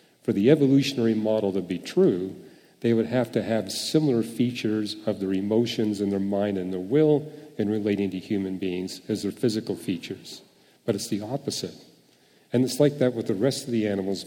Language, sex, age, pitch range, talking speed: English, male, 40-59, 95-120 Hz, 195 wpm